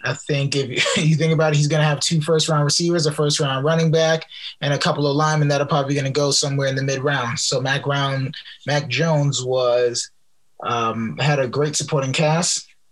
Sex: male